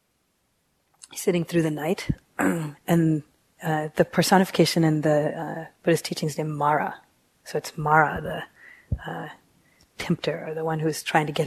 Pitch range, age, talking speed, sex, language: 155-180 Hz, 30-49, 155 wpm, female, English